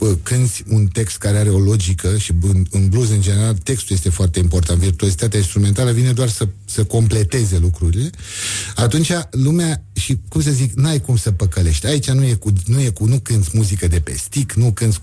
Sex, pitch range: male, 95-125 Hz